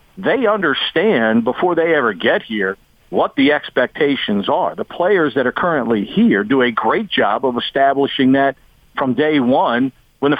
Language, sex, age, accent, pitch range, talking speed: English, male, 50-69, American, 135-170 Hz, 165 wpm